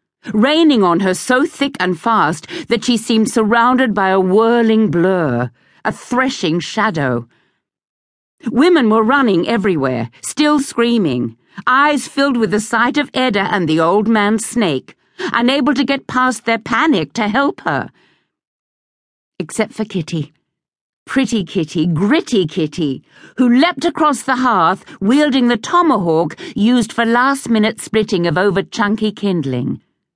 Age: 50-69